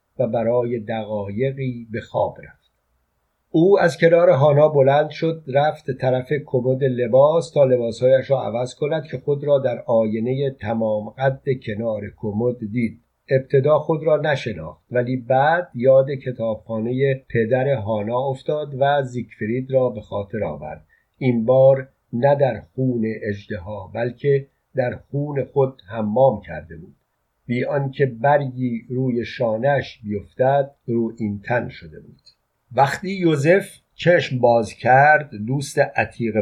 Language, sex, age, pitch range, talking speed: Persian, male, 50-69, 115-140 Hz, 130 wpm